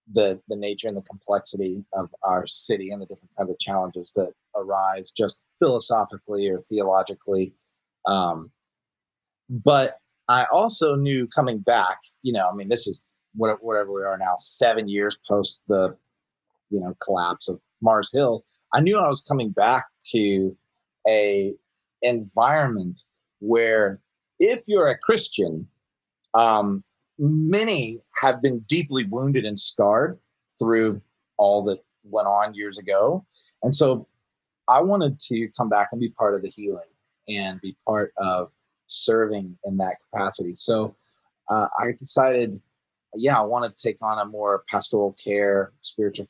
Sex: male